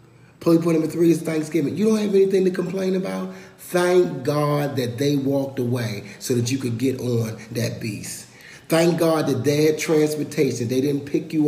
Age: 40-59